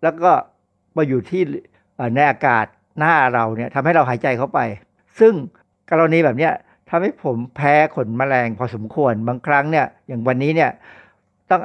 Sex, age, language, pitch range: male, 60-79, Thai, 120-165 Hz